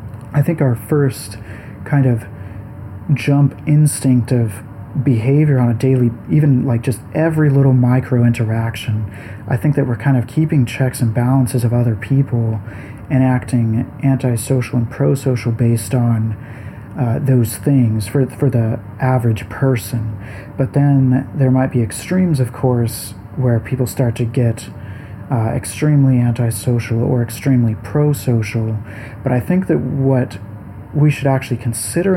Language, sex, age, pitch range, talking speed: English, male, 40-59, 110-135 Hz, 145 wpm